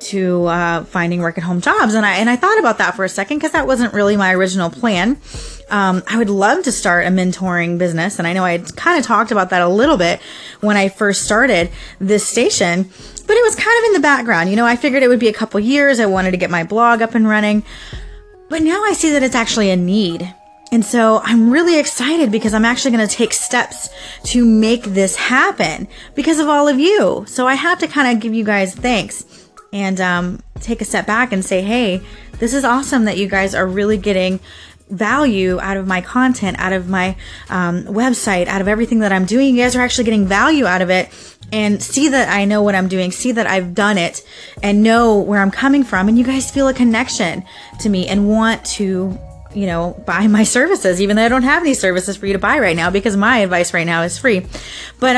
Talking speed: 235 wpm